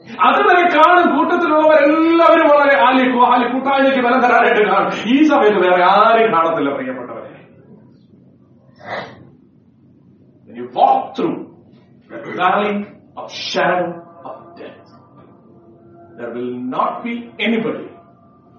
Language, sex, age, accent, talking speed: English, male, 40-59, Indian, 40 wpm